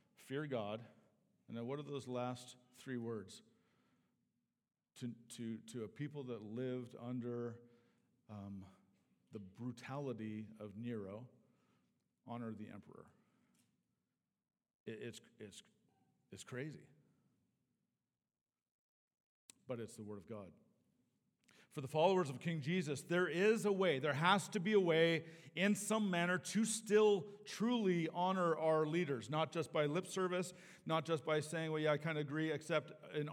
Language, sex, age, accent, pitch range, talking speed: English, male, 50-69, American, 125-165 Hz, 140 wpm